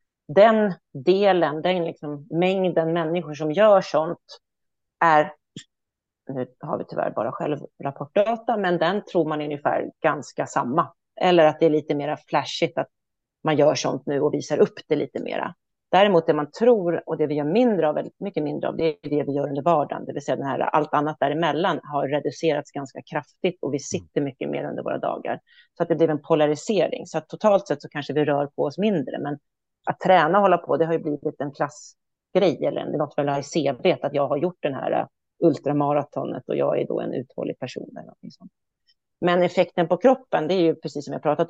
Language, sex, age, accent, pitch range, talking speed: Swedish, female, 40-59, native, 145-180 Hz, 205 wpm